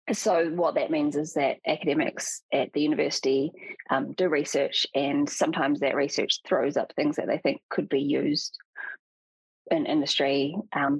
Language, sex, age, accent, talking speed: English, female, 20-39, Australian, 160 wpm